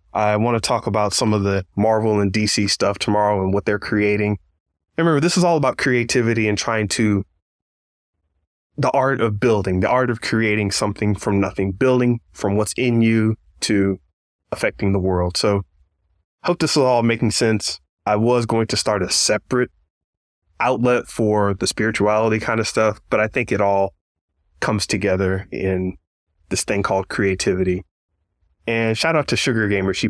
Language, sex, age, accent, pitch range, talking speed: English, male, 20-39, American, 95-115 Hz, 175 wpm